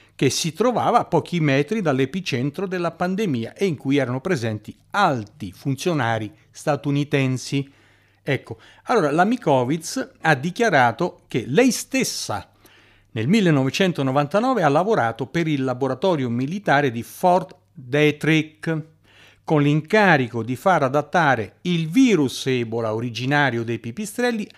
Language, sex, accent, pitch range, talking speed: Italian, male, native, 125-185 Hz, 115 wpm